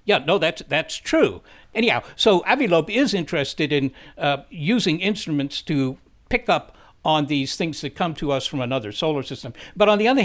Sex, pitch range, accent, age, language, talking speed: male, 135-180 Hz, American, 60-79, English, 185 wpm